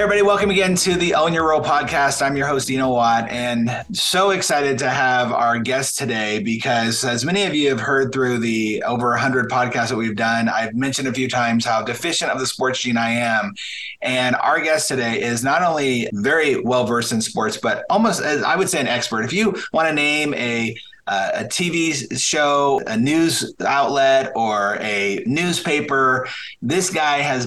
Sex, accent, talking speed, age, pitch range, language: male, American, 195 wpm, 30-49, 120-140 Hz, English